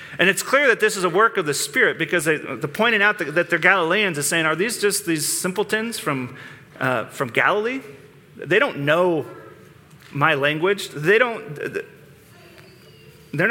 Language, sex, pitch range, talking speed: English, male, 155-195 Hz, 170 wpm